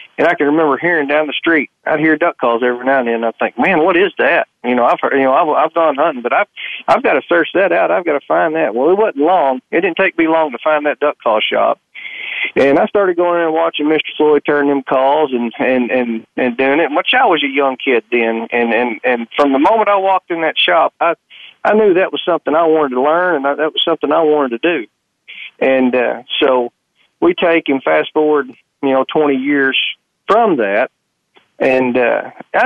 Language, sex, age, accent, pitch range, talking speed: English, male, 40-59, American, 130-165 Hz, 245 wpm